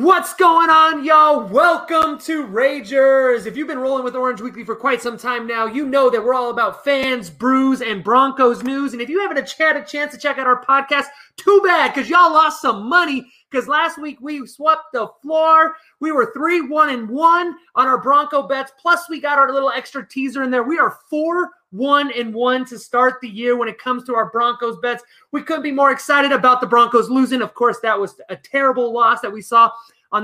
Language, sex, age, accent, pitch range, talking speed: English, male, 30-49, American, 230-290 Hz, 220 wpm